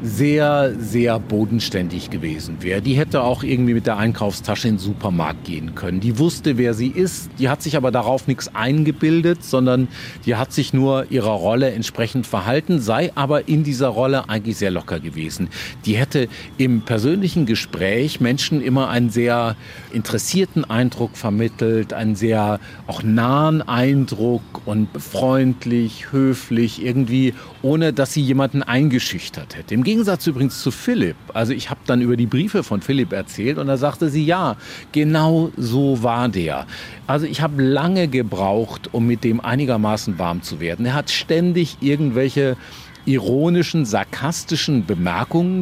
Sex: male